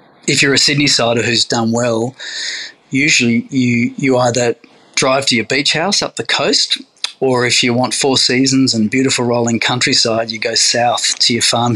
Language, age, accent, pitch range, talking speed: English, 30-49, Australian, 120-145 Hz, 185 wpm